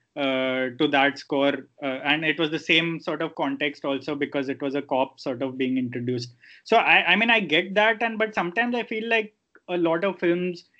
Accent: Indian